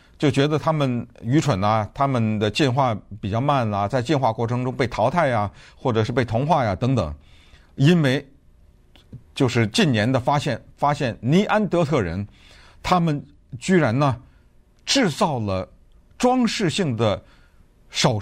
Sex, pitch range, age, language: male, 105-155 Hz, 50-69, Chinese